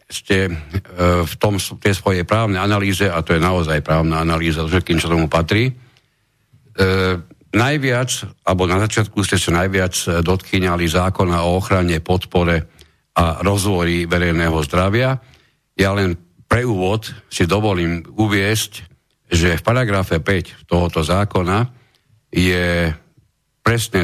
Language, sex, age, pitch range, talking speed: Slovak, male, 60-79, 85-115 Hz, 120 wpm